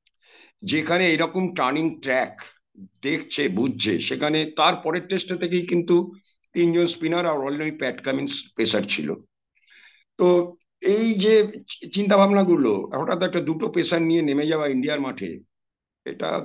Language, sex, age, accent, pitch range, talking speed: Bengali, male, 60-79, native, 125-170 Hz, 60 wpm